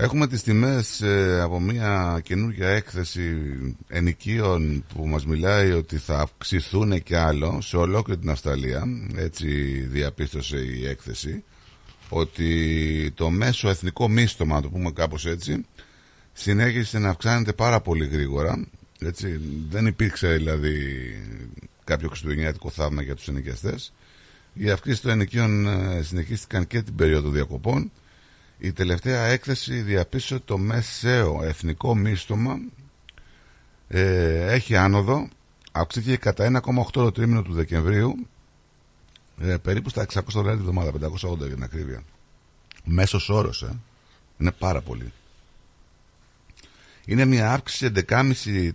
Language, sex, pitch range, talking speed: Greek, male, 80-110 Hz, 120 wpm